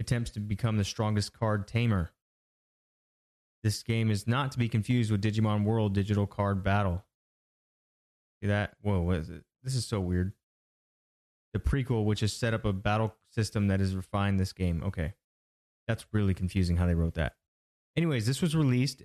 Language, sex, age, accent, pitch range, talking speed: English, male, 20-39, American, 95-115 Hz, 175 wpm